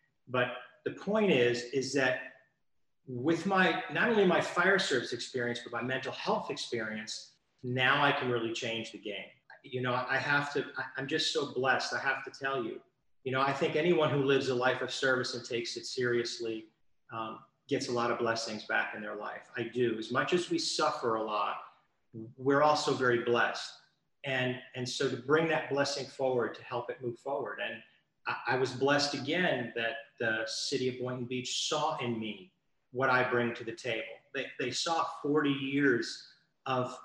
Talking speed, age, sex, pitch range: 190 wpm, 40-59, male, 120-145 Hz